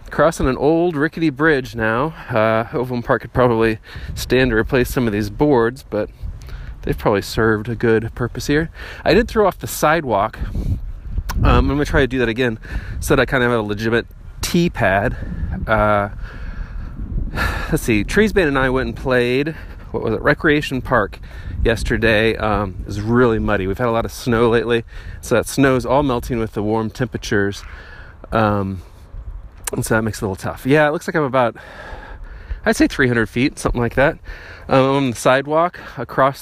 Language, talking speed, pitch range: English, 190 wpm, 100-130 Hz